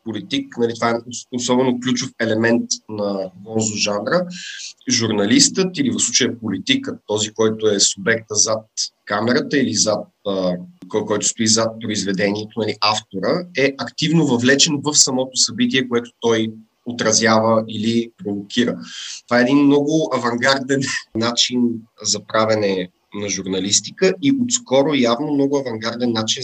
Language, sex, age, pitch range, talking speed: Bulgarian, male, 30-49, 105-125 Hz, 125 wpm